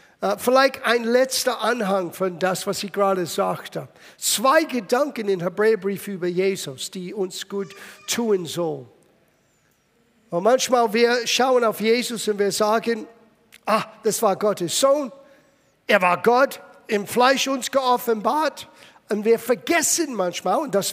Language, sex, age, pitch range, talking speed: German, male, 50-69, 200-265 Hz, 140 wpm